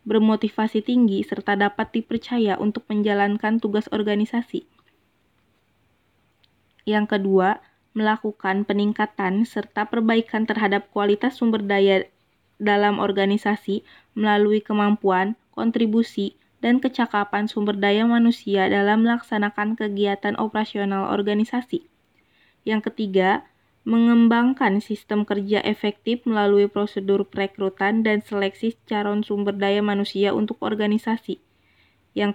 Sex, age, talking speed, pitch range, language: female, 20-39, 95 wpm, 200-225 Hz, Indonesian